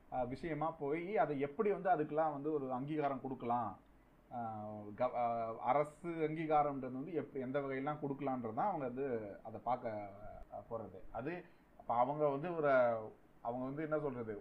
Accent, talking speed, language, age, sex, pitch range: native, 135 wpm, Tamil, 30-49, male, 125-160 Hz